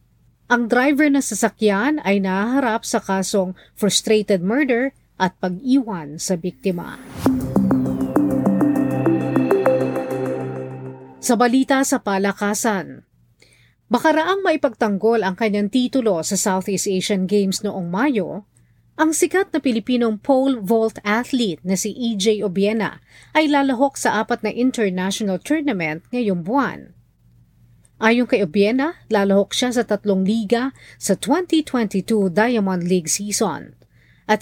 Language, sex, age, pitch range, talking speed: Filipino, female, 40-59, 190-255 Hz, 110 wpm